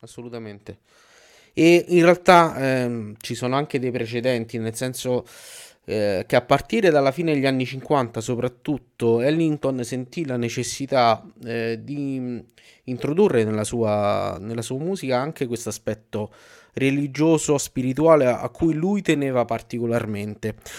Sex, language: male, Italian